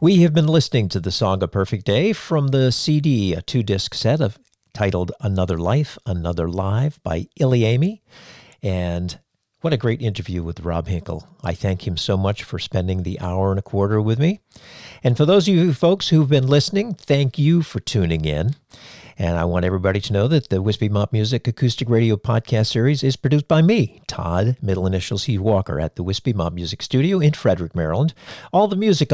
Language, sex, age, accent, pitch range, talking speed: English, male, 50-69, American, 100-140 Hz, 200 wpm